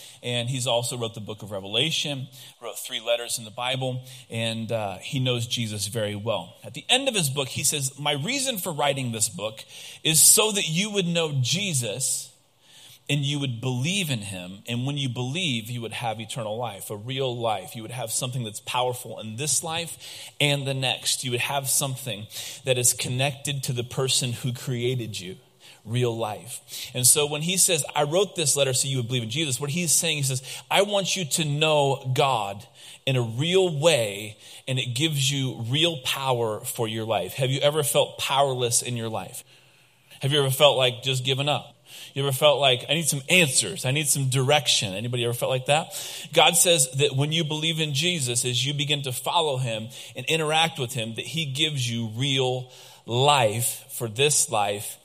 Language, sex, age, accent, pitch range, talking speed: English, male, 30-49, American, 120-145 Hz, 205 wpm